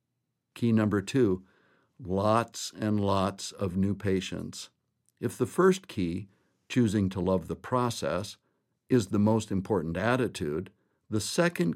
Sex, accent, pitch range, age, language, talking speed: male, American, 95-125 Hz, 60-79, English, 130 wpm